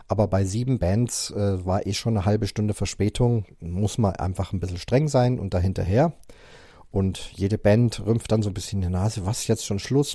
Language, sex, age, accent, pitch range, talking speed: German, male, 40-59, German, 100-125 Hz, 220 wpm